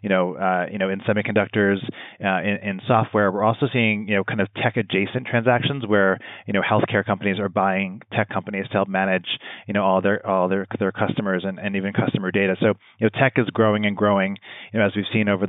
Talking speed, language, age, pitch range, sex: 230 wpm, English, 30-49, 100-110 Hz, male